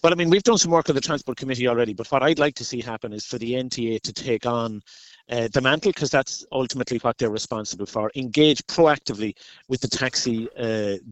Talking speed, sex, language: 225 wpm, male, English